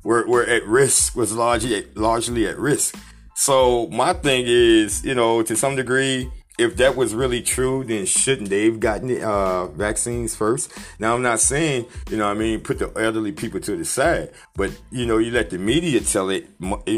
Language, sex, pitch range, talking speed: English, male, 100-135 Hz, 200 wpm